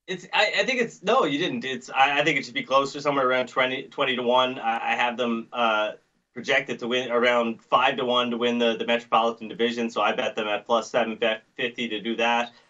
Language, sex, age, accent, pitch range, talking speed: English, male, 20-39, American, 115-140 Hz, 240 wpm